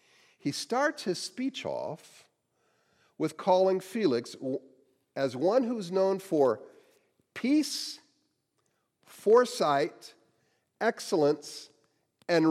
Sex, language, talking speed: male, English, 80 wpm